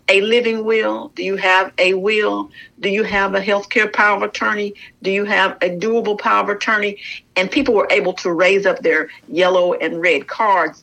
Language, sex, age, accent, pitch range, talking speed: English, female, 50-69, American, 185-255 Hz, 200 wpm